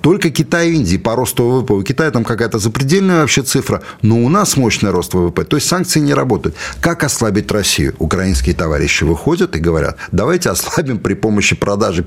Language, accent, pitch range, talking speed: Russian, native, 85-130 Hz, 190 wpm